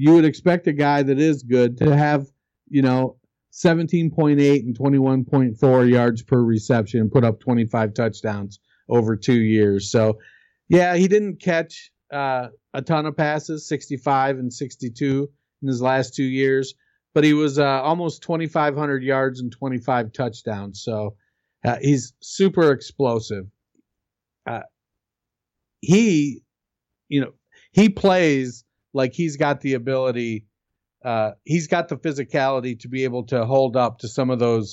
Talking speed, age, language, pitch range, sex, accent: 145 wpm, 50-69, English, 115-150 Hz, male, American